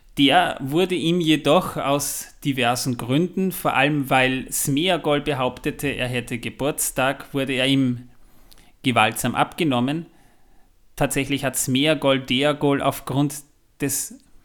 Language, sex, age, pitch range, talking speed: German, male, 30-49, 125-155 Hz, 110 wpm